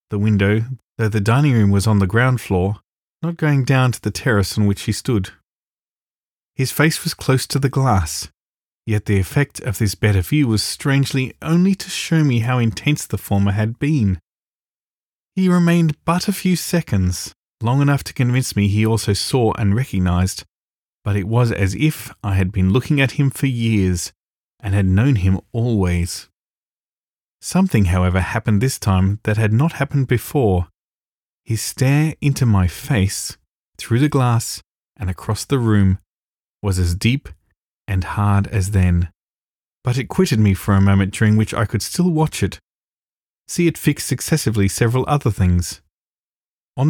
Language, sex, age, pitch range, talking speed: English, male, 30-49, 95-135 Hz, 170 wpm